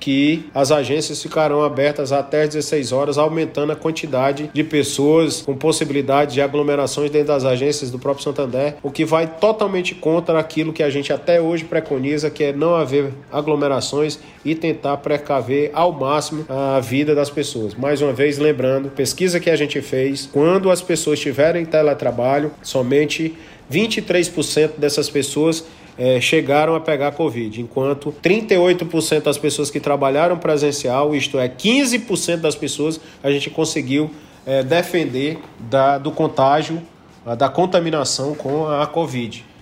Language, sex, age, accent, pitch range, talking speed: Portuguese, male, 40-59, Brazilian, 140-160 Hz, 150 wpm